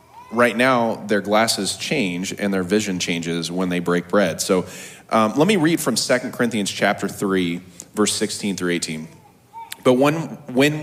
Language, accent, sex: English, American, male